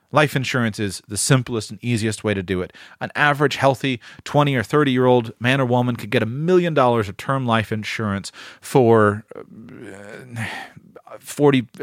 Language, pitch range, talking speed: English, 110-135 Hz, 165 wpm